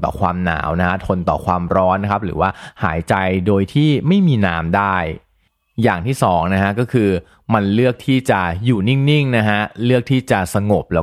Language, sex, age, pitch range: Thai, male, 30-49, 90-120 Hz